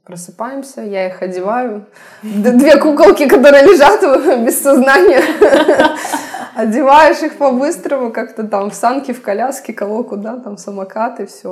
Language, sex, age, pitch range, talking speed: Russian, female, 20-39, 180-225 Hz, 130 wpm